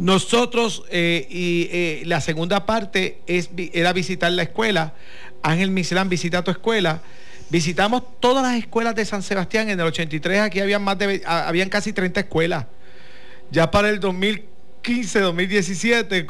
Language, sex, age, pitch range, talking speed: Spanish, male, 50-69, 155-200 Hz, 135 wpm